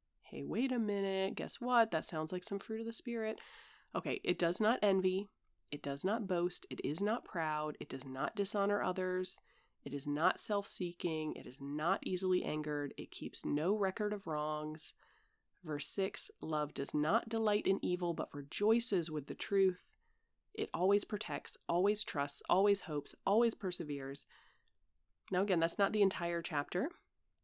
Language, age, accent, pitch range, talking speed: English, 30-49, American, 155-205 Hz, 165 wpm